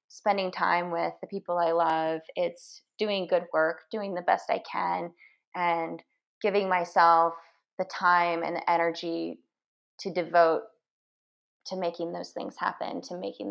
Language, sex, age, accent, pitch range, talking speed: English, female, 20-39, American, 170-200 Hz, 145 wpm